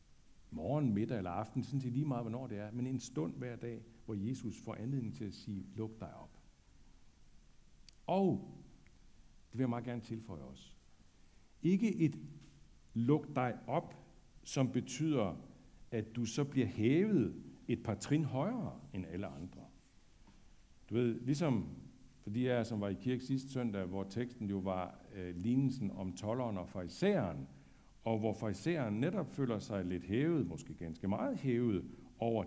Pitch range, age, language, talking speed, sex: 100-130 Hz, 60-79, Danish, 160 wpm, male